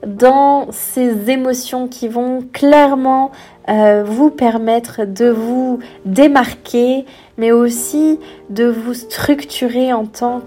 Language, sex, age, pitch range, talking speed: French, female, 20-39, 220-255 Hz, 110 wpm